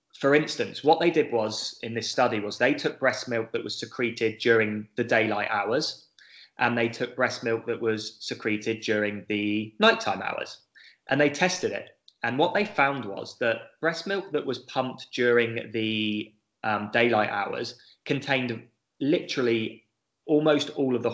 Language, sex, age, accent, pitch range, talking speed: English, male, 20-39, British, 110-130 Hz, 170 wpm